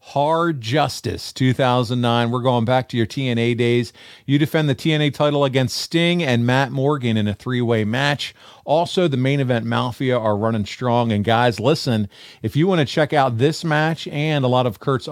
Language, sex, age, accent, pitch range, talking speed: English, male, 40-59, American, 115-155 Hz, 190 wpm